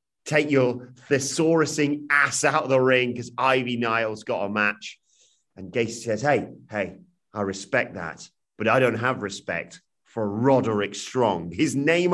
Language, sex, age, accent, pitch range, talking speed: English, male, 40-59, British, 100-130 Hz, 160 wpm